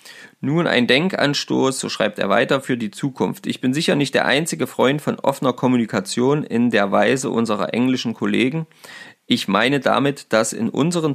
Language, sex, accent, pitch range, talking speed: German, male, German, 115-185 Hz, 170 wpm